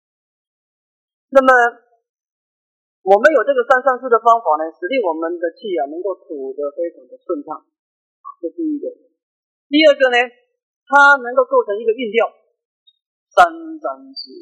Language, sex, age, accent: Chinese, male, 40-59, native